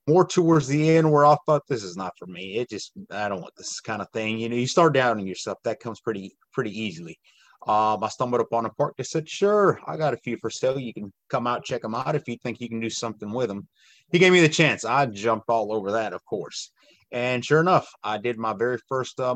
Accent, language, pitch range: American, English, 110-140 Hz